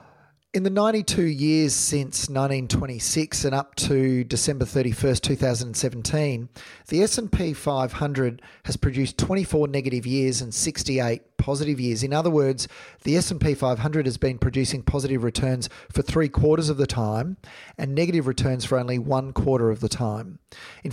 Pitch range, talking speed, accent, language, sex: 120-145 Hz, 150 wpm, Australian, English, male